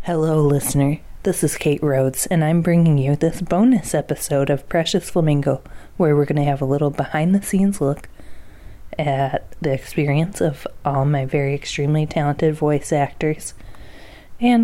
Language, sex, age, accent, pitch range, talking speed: English, female, 20-39, American, 140-175 Hz, 160 wpm